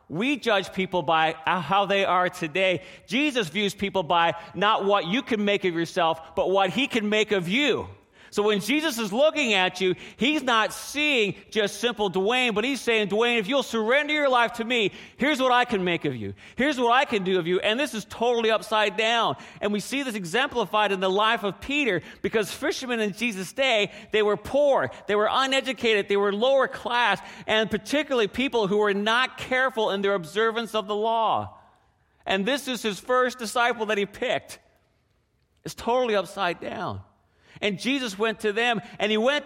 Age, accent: 40-59, American